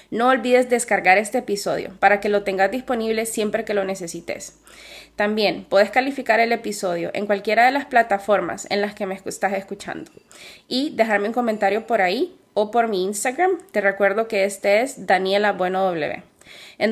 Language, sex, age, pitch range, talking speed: Spanish, female, 20-39, 200-235 Hz, 165 wpm